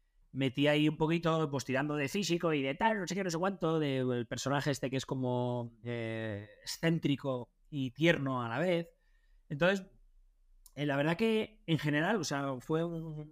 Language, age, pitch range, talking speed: English, 30-49, 125-165 Hz, 190 wpm